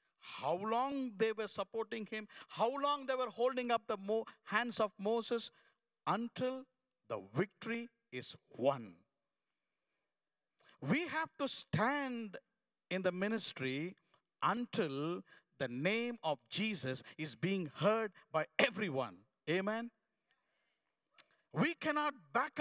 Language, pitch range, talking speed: English, 175-250 Hz, 110 wpm